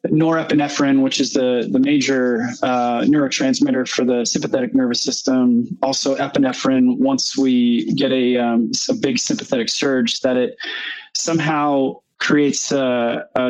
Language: English